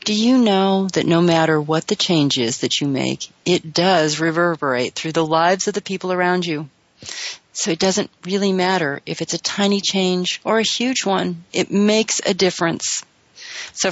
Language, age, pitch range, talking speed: English, 40-59, 155-195 Hz, 185 wpm